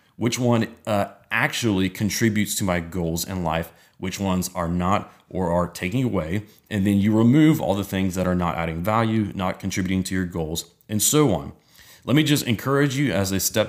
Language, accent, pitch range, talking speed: English, American, 90-105 Hz, 200 wpm